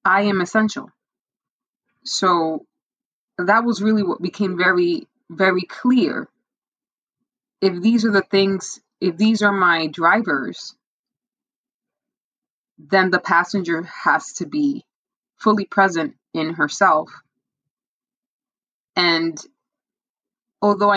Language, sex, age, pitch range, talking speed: English, female, 20-39, 170-250 Hz, 95 wpm